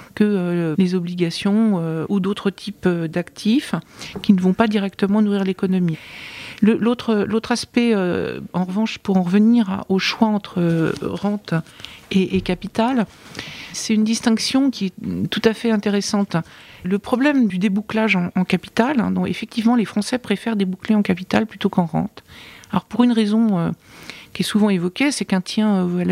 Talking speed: 175 wpm